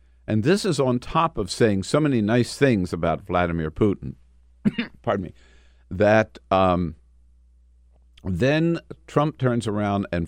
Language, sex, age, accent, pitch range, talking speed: English, male, 50-69, American, 65-105 Hz, 135 wpm